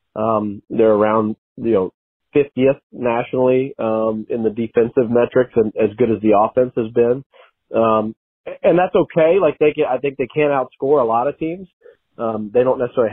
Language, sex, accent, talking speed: English, male, American, 185 wpm